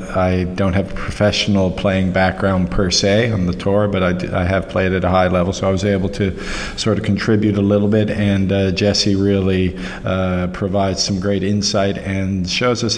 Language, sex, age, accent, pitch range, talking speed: English, male, 50-69, American, 95-105 Hz, 205 wpm